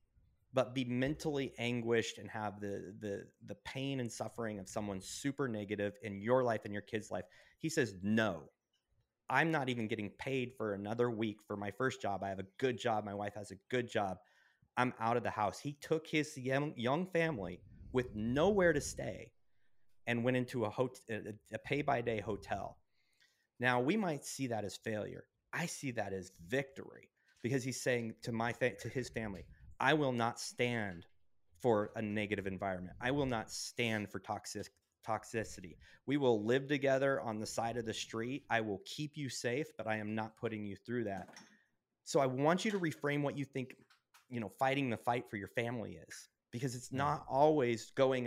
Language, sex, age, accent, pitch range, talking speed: English, male, 30-49, American, 105-135 Hz, 195 wpm